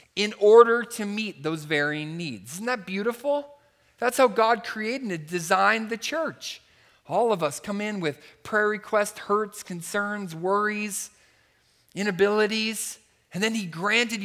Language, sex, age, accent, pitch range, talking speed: English, male, 40-59, American, 130-205 Hz, 145 wpm